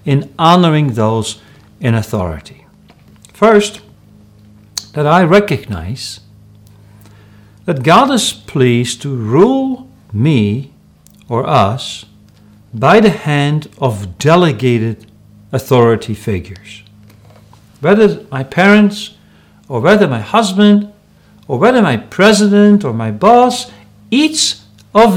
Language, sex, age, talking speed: English, male, 60-79, 100 wpm